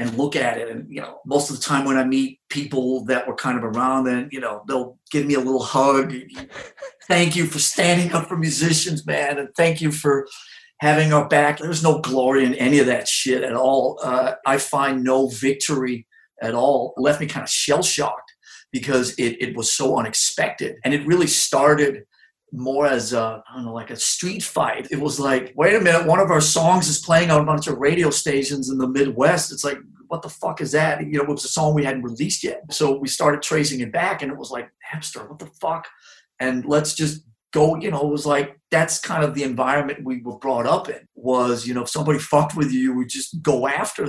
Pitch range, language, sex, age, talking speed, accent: 130-155 Hz, English, male, 40-59, 235 wpm, American